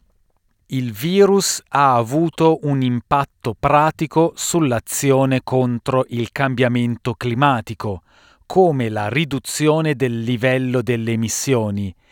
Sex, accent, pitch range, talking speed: male, native, 115-145 Hz, 95 wpm